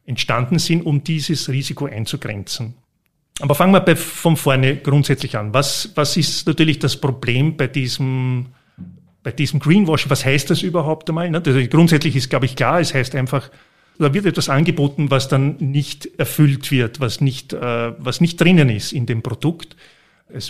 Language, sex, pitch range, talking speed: German, male, 130-160 Hz, 170 wpm